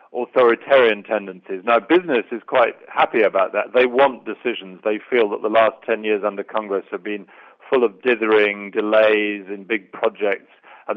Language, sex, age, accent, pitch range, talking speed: English, male, 40-59, British, 105-120 Hz, 170 wpm